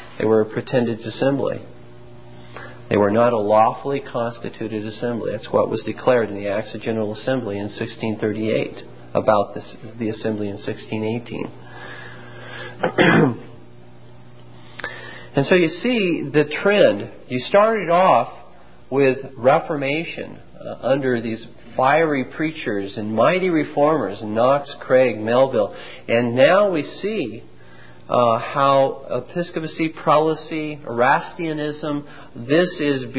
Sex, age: male, 40-59